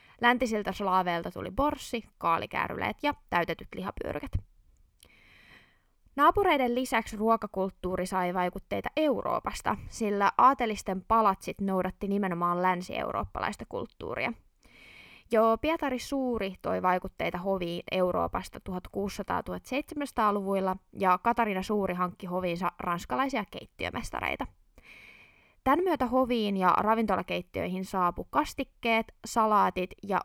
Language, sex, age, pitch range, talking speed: Finnish, female, 20-39, 180-235 Hz, 90 wpm